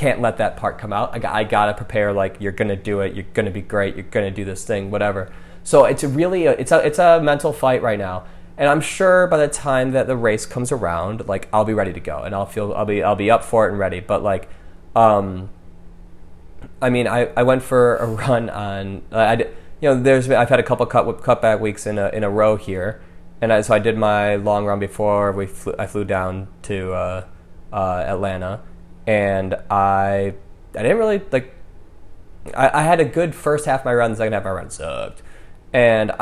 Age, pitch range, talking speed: 20-39, 95-120 Hz, 230 wpm